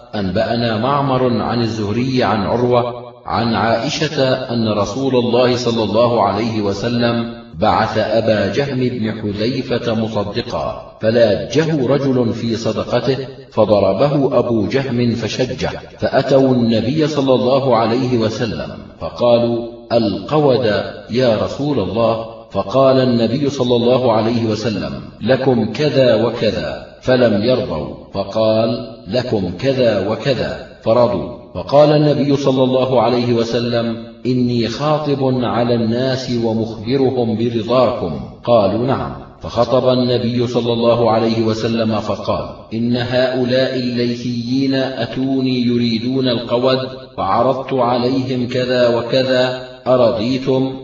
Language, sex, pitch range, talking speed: Arabic, male, 115-130 Hz, 105 wpm